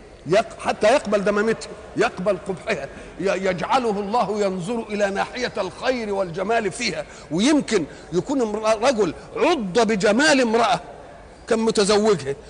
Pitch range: 185-240 Hz